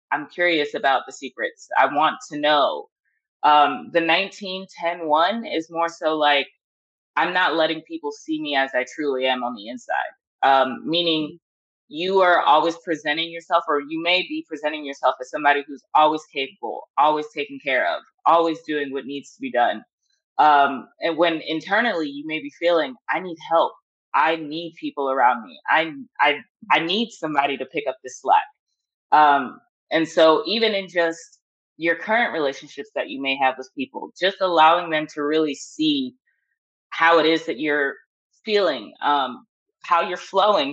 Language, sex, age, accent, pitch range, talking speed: English, female, 20-39, American, 150-200 Hz, 170 wpm